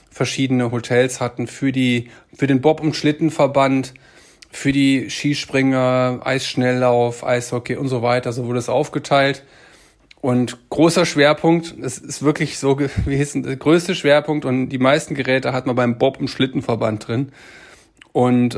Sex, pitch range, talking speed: male, 125-145 Hz, 150 wpm